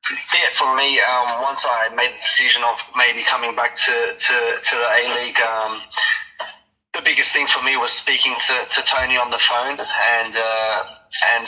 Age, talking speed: 20-39, 190 wpm